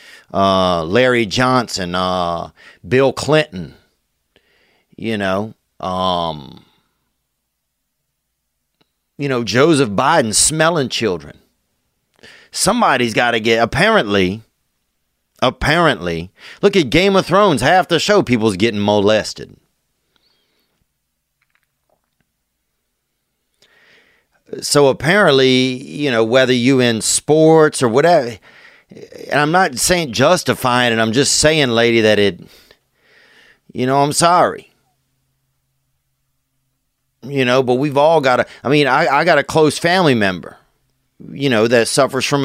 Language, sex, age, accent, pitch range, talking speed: English, male, 40-59, American, 115-145 Hz, 110 wpm